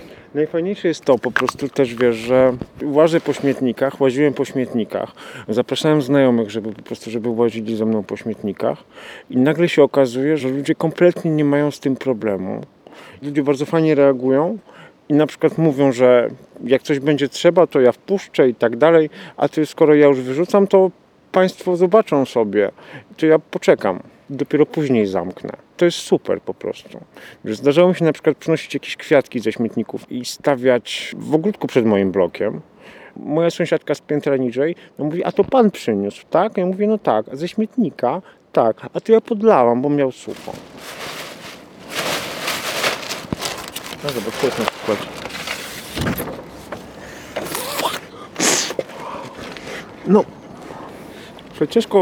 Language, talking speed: Polish, 150 wpm